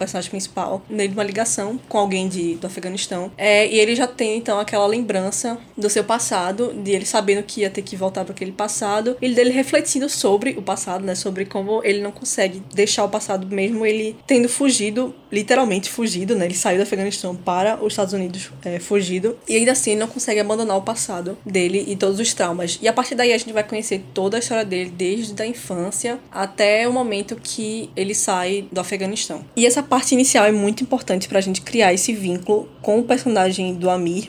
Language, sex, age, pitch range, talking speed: Portuguese, female, 10-29, 190-235 Hz, 210 wpm